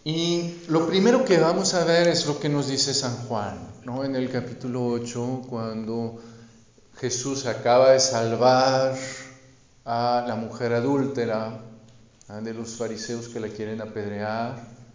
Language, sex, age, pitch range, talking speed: Spanish, male, 50-69, 120-160 Hz, 145 wpm